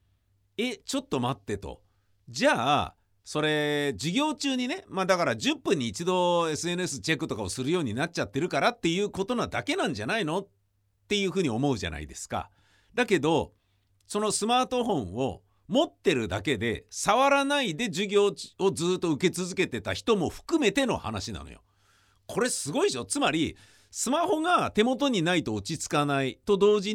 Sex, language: male, Japanese